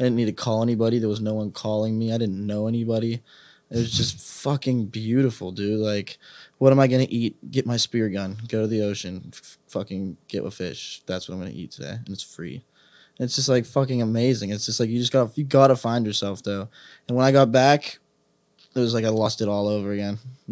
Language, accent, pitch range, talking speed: English, American, 110-130 Hz, 235 wpm